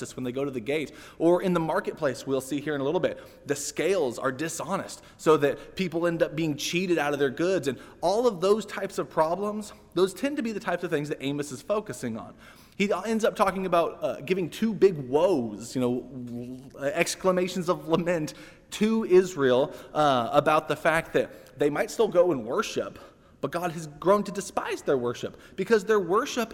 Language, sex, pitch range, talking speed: English, male, 170-215 Hz, 205 wpm